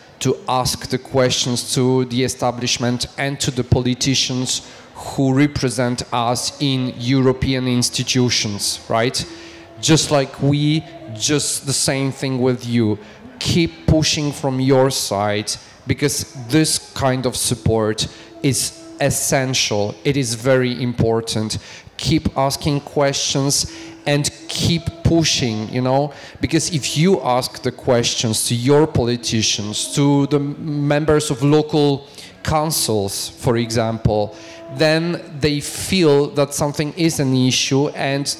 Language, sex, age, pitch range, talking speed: Danish, male, 40-59, 120-145 Hz, 120 wpm